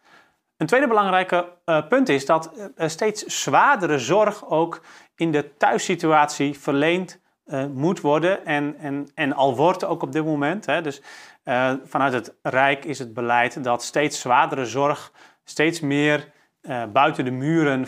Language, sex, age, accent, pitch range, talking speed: Dutch, male, 40-59, Dutch, 130-160 Hz, 160 wpm